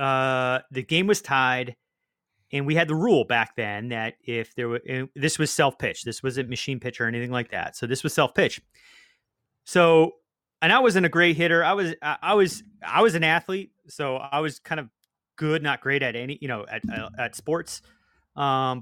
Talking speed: 205 wpm